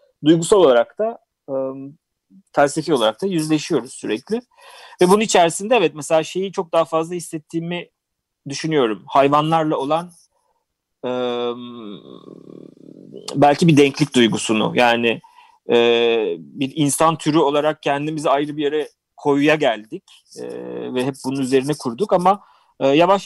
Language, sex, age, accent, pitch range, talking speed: Turkish, male, 40-59, native, 135-180 Hz, 125 wpm